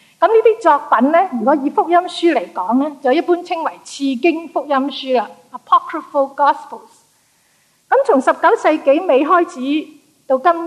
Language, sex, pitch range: Chinese, female, 245-340 Hz